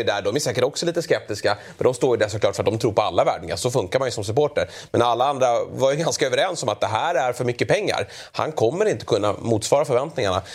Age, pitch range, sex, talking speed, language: 30-49, 110-175 Hz, male, 260 wpm, Swedish